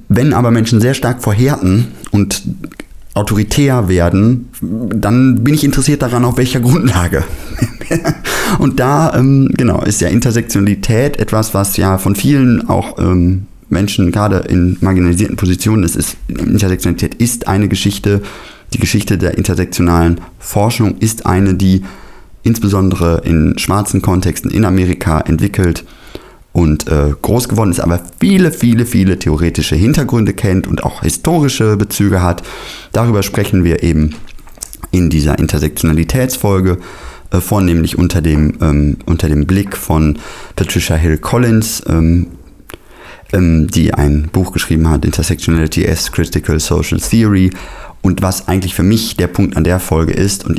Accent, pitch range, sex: German, 85-110 Hz, male